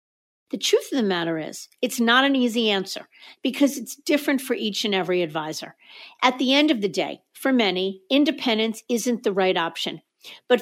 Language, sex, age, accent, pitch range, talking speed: English, female, 50-69, American, 185-250 Hz, 185 wpm